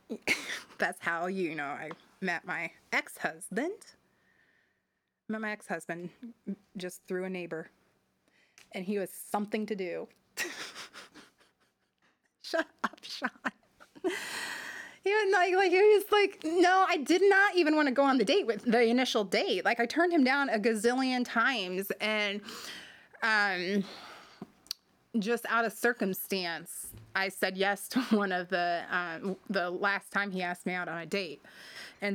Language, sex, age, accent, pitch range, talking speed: English, female, 30-49, American, 180-235 Hz, 150 wpm